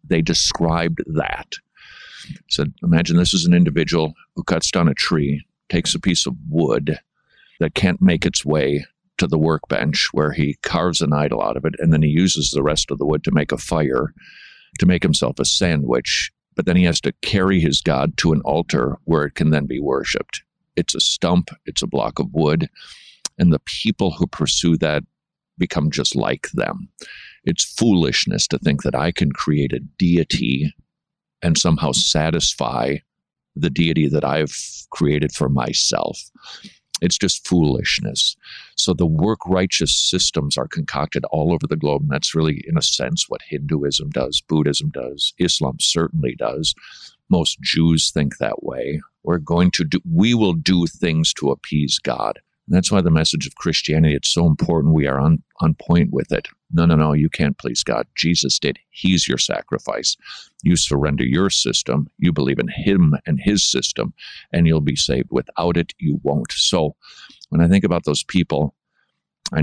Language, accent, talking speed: English, American, 180 wpm